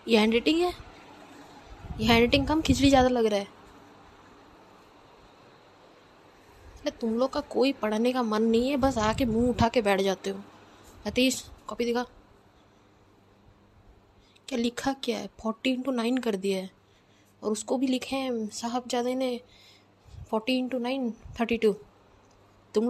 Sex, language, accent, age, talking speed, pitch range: female, English, Indian, 20-39, 145 wpm, 205-255 Hz